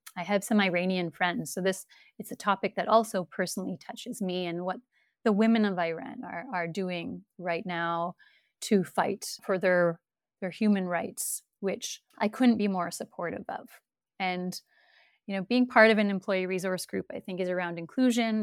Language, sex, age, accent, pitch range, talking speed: English, female, 30-49, American, 185-225 Hz, 180 wpm